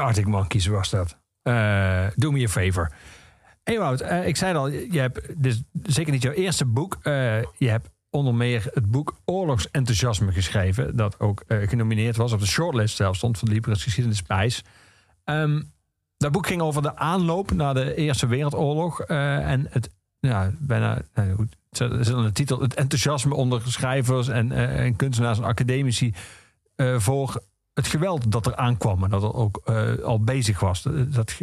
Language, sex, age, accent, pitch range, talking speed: Dutch, male, 50-69, Dutch, 110-140 Hz, 180 wpm